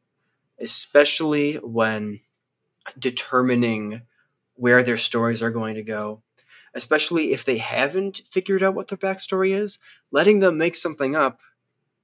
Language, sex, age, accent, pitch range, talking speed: English, male, 20-39, American, 115-140 Hz, 125 wpm